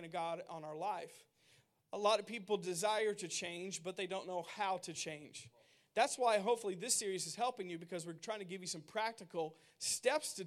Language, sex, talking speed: English, male, 210 wpm